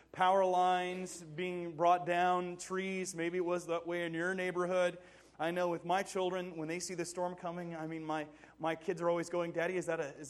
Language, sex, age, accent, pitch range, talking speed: English, male, 30-49, American, 165-205 Hz, 220 wpm